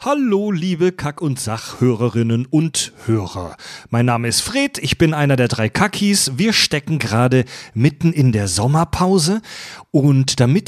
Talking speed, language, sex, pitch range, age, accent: 145 wpm, German, male, 120-155 Hz, 30-49, German